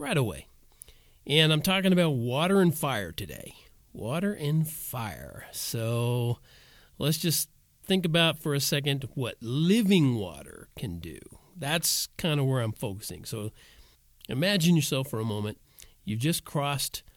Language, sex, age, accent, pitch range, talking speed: English, male, 50-69, American, 115-155 Hz, 145 wpm